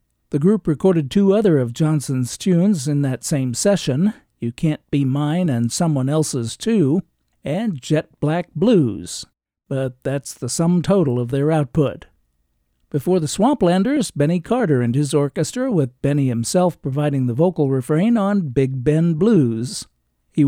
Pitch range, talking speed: 130-170 Hz, 150 wpm